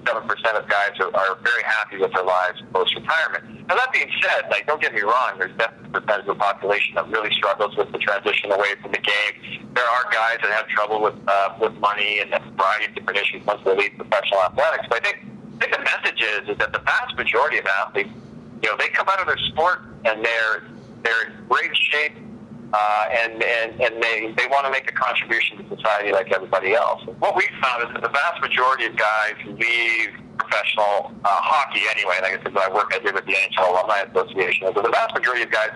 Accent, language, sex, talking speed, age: American, English, male, 225 wpm, 40-59